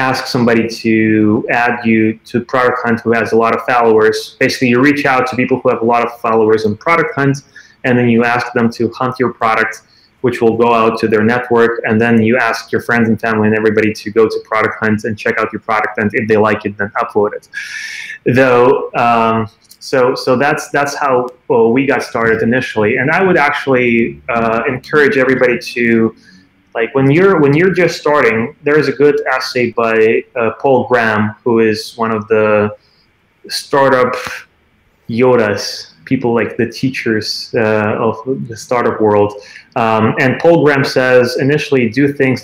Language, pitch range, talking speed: English, 110-130 Hz, 190 wpm